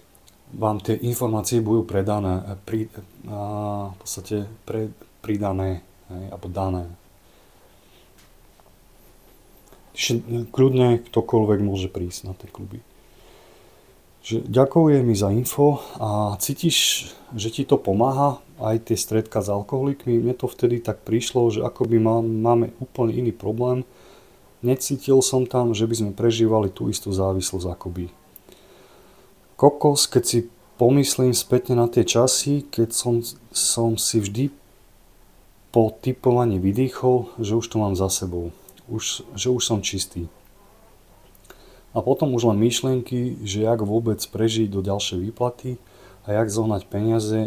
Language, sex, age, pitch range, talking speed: Slovak, male, 30-49, 100-120 Hz, 130 wpm